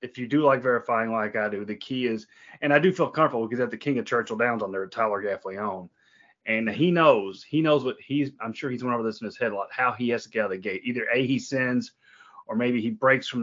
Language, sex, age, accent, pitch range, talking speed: English, male, 30-49, American, 110-135 Hz, 290 wpm